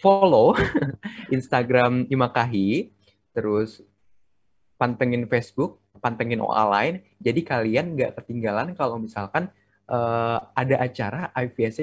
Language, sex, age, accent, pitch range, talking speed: Indonesian, male, 20-39, native, 110-140 Hz, 95 wpm